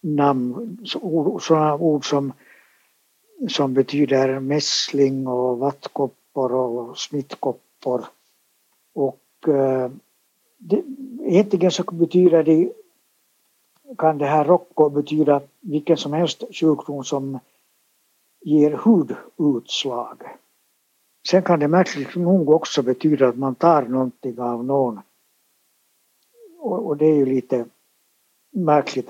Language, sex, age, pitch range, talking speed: Swedish, male, 60-79, 135-170 Hz, 95 wpm